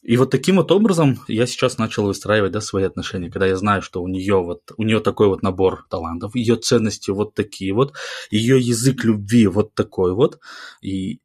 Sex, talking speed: male, 195 wpm